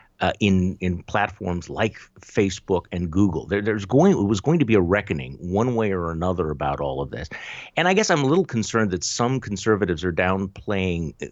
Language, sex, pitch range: English, male, 85-110 Hz